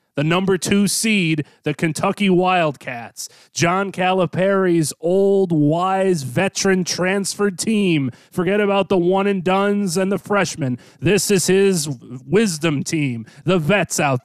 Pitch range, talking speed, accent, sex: 145-195 Hz, 130 wpm, American, male